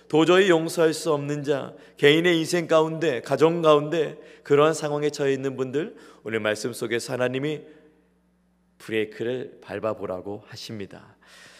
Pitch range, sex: 130-170 Hz, male